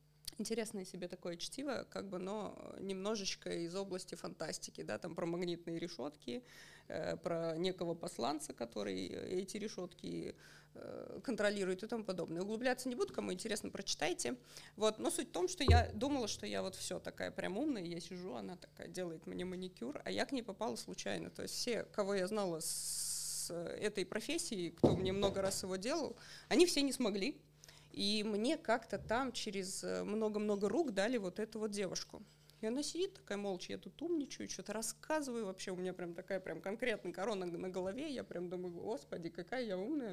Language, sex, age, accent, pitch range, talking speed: Russian, female, 20-39, native, 175-235 Hz, 180 wpm